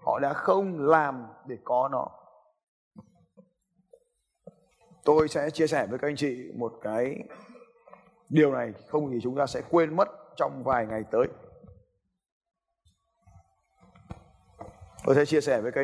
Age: 20-39